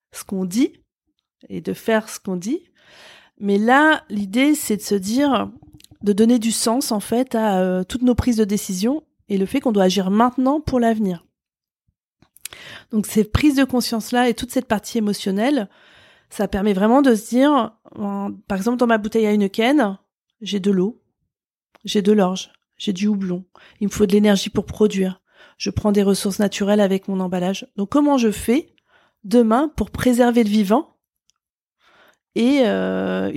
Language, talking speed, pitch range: French, 175 wpm, 190-235 Hz